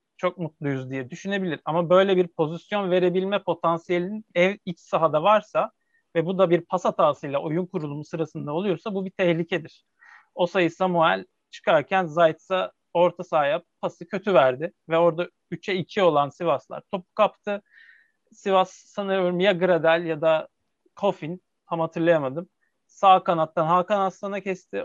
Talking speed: 140 wpm